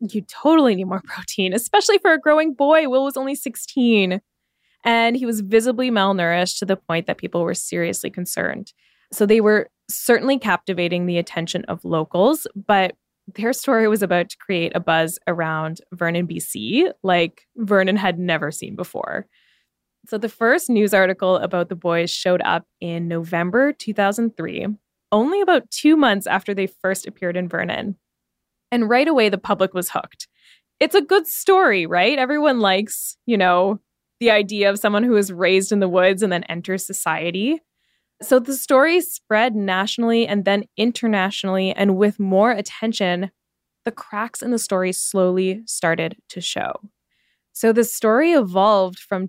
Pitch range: 180-235 Hz